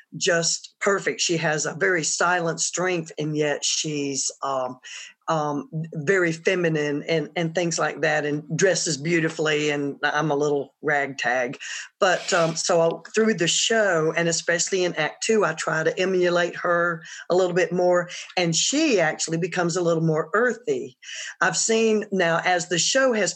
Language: English